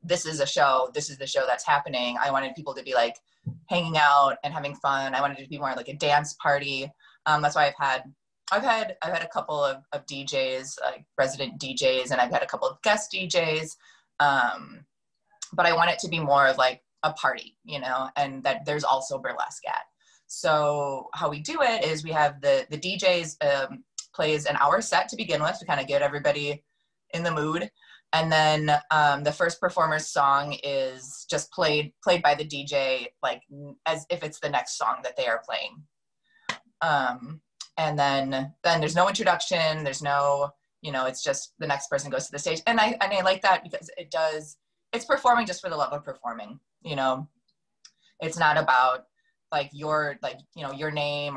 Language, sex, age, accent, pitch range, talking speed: English, female, 20-39, American, 140-170 Hz, 205 wpm